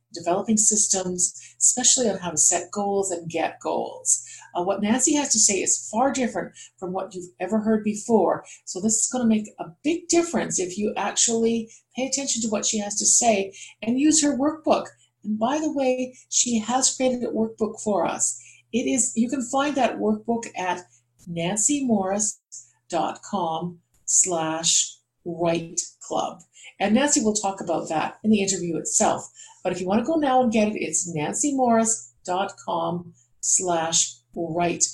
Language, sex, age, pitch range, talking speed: English, female, 50-69, 165-225 Hz, 165 wpm